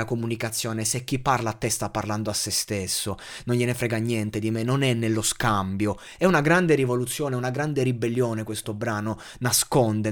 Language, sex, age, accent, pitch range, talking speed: Italian, male, 20-39, native, 115-160 Hz, 185 wpm